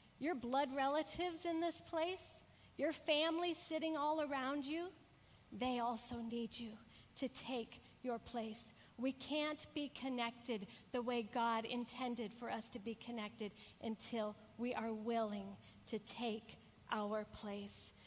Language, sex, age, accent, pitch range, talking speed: English, female, 40-59, American, 230-310 Hz, 135 wpm